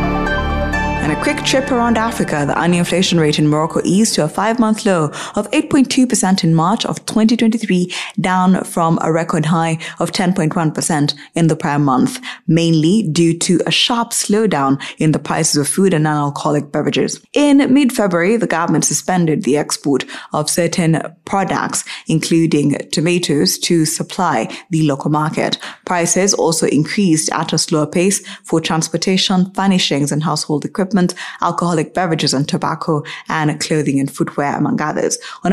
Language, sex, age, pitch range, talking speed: English, female, 20-39, 155-195 Hz, 150 wpm